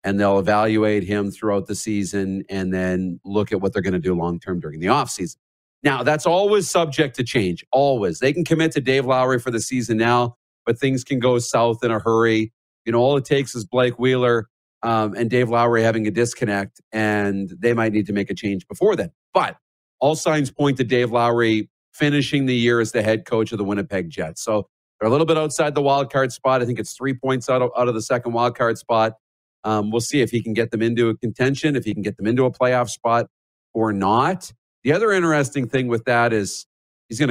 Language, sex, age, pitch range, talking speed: English, male, 40-59, 100-130 Hz, 225 wpm